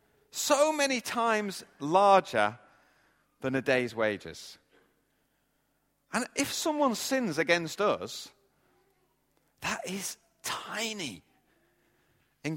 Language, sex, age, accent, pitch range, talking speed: English, male, 30-49, British, 130-215 Hz, 85 wpm